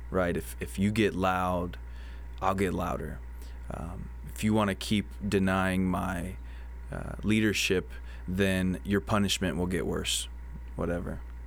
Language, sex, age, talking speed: English, male, 20-39, 135 wpm